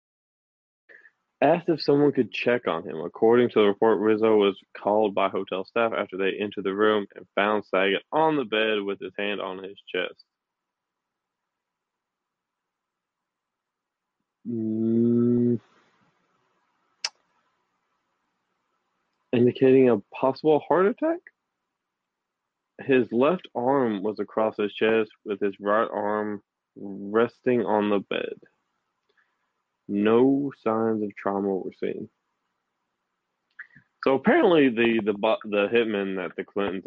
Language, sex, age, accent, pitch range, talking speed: English, male, 20-39, American, 95-115 Hz, 115 wpm